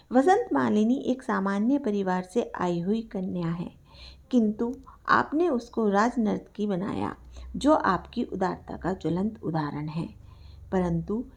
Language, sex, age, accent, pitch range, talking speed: Hindi, female, 50-69, native, 190-275 Hz, 125 wpm